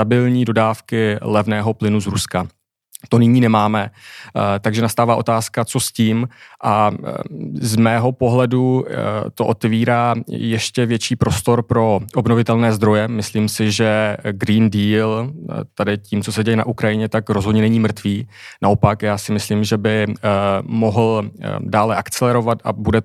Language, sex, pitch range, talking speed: Czech, male, 105-115 Hz, 140 wpm